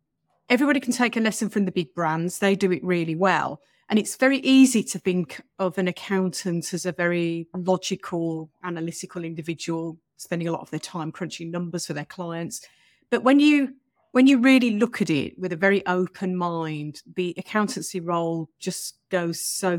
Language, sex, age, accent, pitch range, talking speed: English, female, 30-49, British, 170-205 Hz, 180 wpm